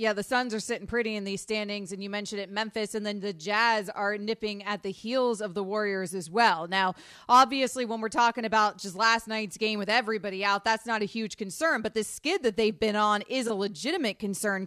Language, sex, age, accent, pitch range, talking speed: English, female, 30-49, American, 210-260 Hz, 235 wpm